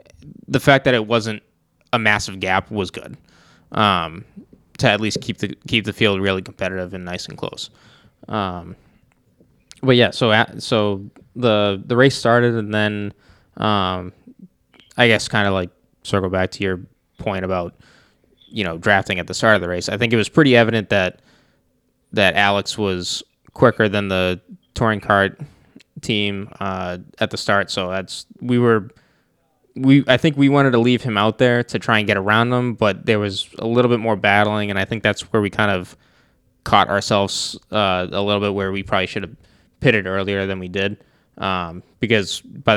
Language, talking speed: English, 185 wpm